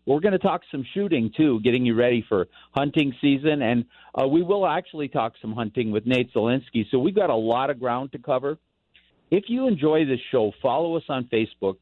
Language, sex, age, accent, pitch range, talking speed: English, male, 50-69, American, 110-150 Hz, 215 wpm